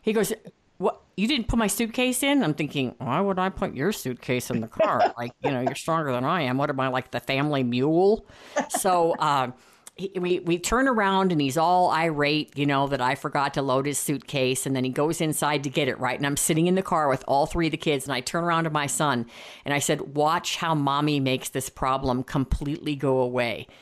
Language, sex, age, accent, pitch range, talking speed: English, female, 50-69, American, 130-165 Hz, 240 wpm